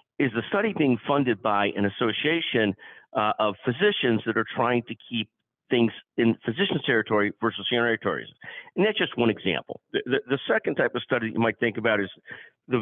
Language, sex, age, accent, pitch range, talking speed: English, male, 50-69, American, 110-145 Hz, 190 wpm